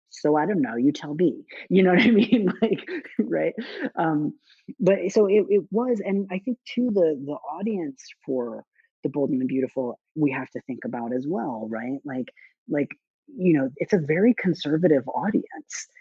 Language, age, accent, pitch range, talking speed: English, 30-49, American, 120-205 Hz, 185 wpm